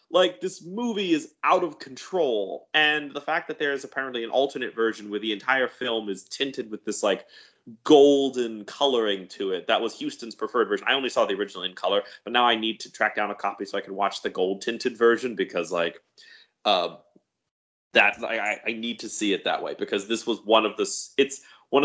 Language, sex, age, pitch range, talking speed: English, male, 20-39, 110-170 Hz, 215 wpm